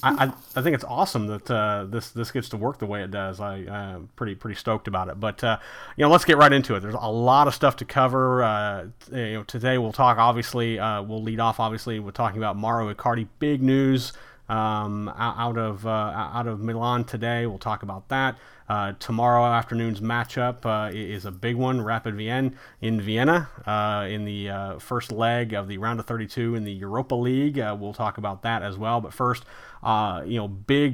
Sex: male